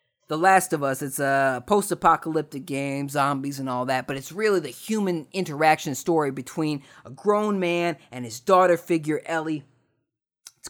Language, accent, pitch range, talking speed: English, American, 150-195 Hz, 165 wpm